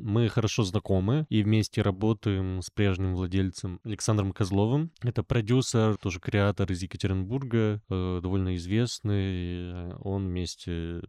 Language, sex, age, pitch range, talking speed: Russian, male, 20-39, 95-110 Hz, 120 wpm